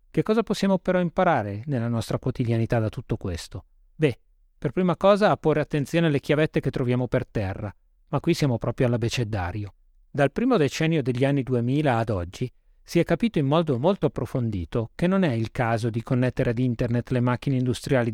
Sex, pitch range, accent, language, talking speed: male, 115-150 Hz, native, Italian, 185 wpm